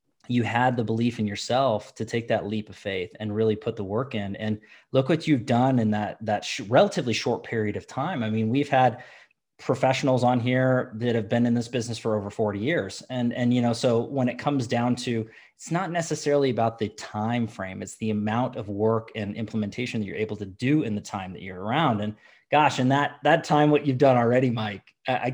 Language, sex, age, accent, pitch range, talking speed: English, male, 20-39, American, 110-130 Hz, 225 wpm